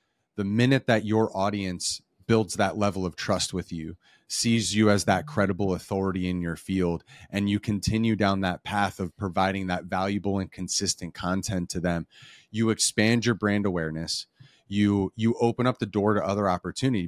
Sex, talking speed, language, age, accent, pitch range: male, 175 wpm, English, 30-49, American, 95-115 Hz